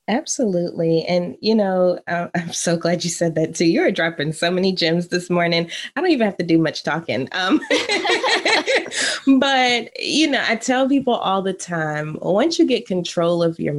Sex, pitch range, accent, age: female, 165-205 Hz, American, 20-39